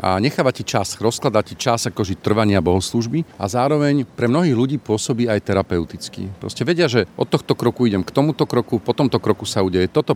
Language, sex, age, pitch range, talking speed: Slovak, male, 40-59, 95-120 Hz, 195 wpm